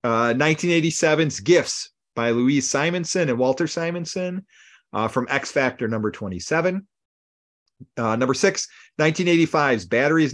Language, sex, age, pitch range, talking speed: English, male, 40-59, 110-165 Hz, 115 wpm